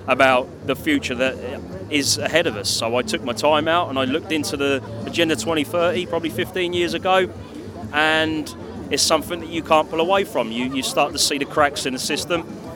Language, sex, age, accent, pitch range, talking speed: English, male, 30-49, British, 115-155 Hz, 205 wpm